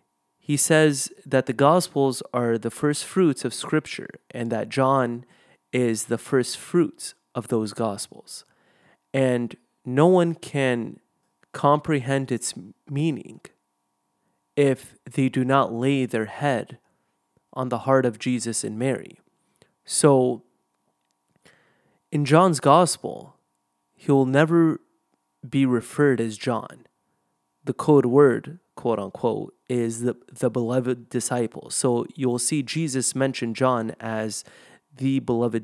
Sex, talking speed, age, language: male, 120 wpm, 20-39, English